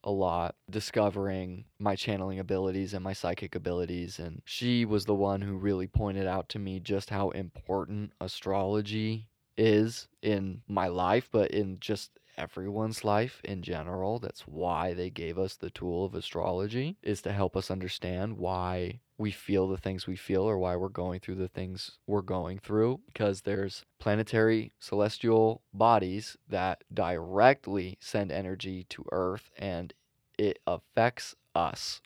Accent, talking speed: American, 155 wpm